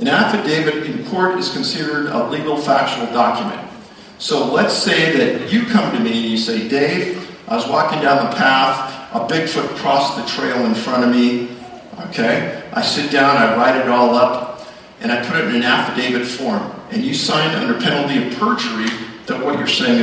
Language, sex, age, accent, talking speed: English, male, 50-69, American, 195 wpm